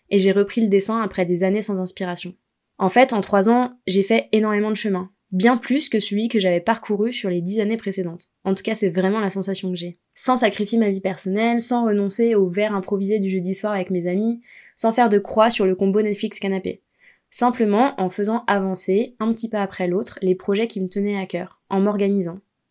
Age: 20-39